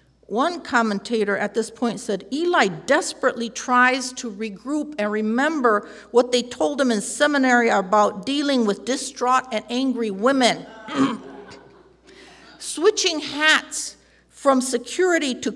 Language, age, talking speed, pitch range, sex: English, 50-69, 120 wpm, 205-260 Hz, female